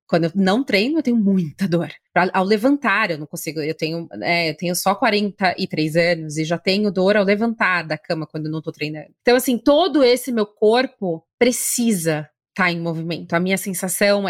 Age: 20-39